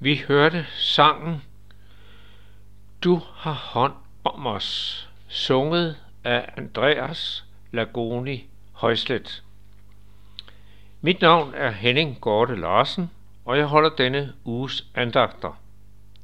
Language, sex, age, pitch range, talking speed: Danish, male, 60-79, 100-135 Hz, 90 wpm